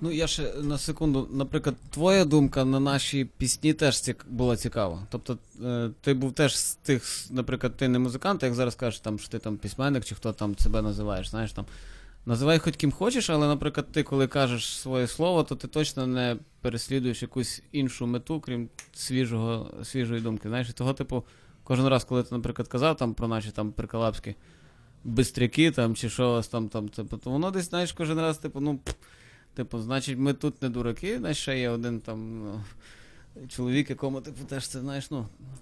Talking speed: 185 wpm